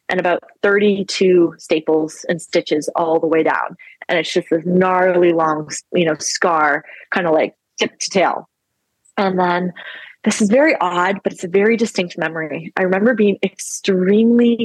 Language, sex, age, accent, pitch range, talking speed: English, female, 20-39, American, 185-235 Hz, 170 wpm